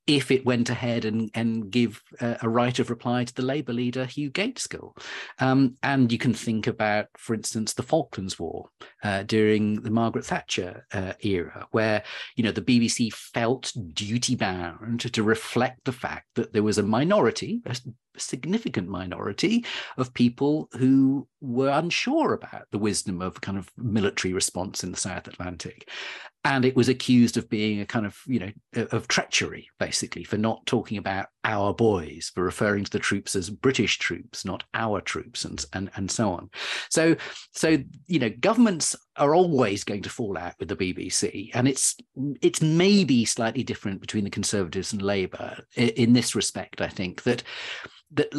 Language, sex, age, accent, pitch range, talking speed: English, male, 40-59, British, 105-130 Hz, 175 wpm